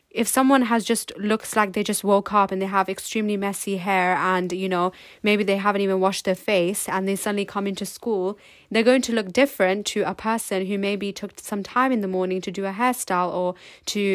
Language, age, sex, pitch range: English, 10-29, female, 195-220 Hz